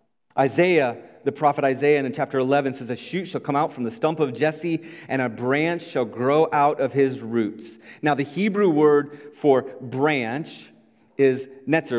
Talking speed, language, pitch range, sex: 175 wpm, English, 110-150 Hz, male